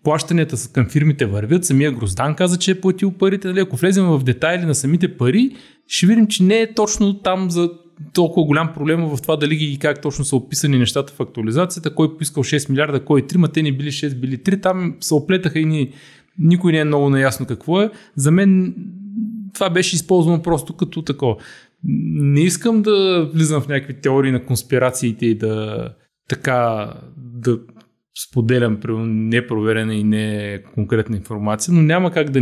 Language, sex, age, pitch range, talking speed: Bulgarian, male, 20-39, 120-170 Hz, 180 wpm